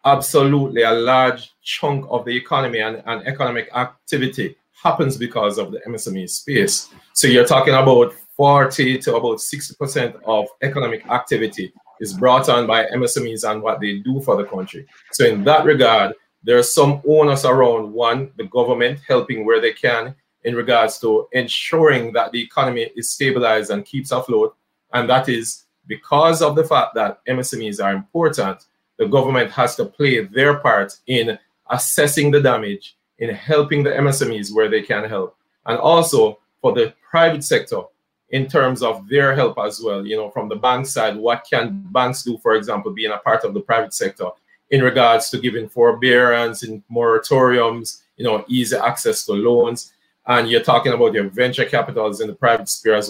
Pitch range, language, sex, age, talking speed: 115-145 Hz, English, male, 30-49, 175 wpm